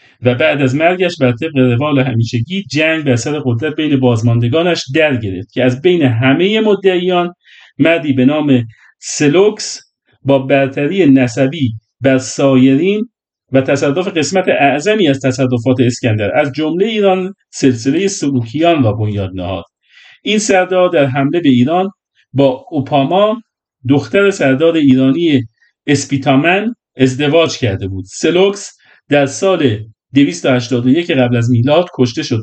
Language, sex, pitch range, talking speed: Persian, male, 125-165 Hz, 130 wpm